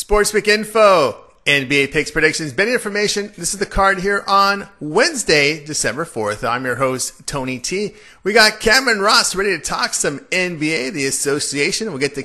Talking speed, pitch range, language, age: 175 wpm, 145-190 Hz, English, 40-59